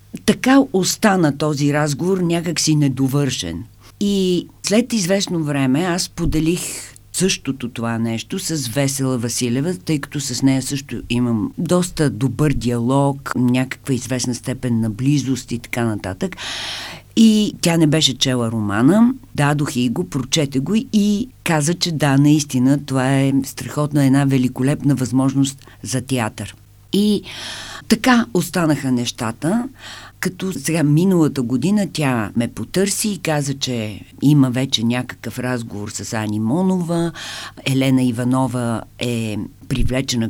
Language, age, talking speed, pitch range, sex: Bulgarian, 50-69, 125 wpm, 120-175 Hz, female